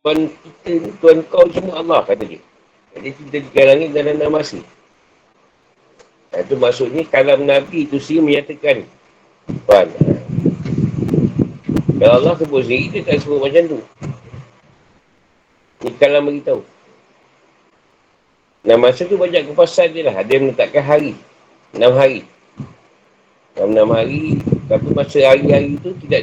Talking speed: 120 wpm